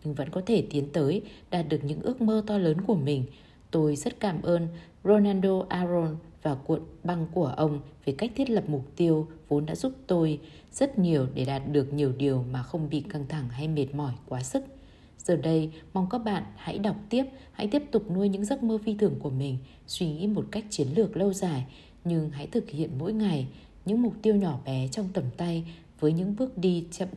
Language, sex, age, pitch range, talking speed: Vietnamese, female, 20-39, 150-210 Hz, 215 wpm